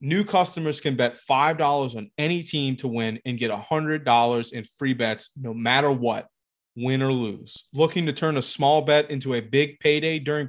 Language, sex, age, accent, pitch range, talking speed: English, male, 30-49, American, 120-150 Hz, 190 wpm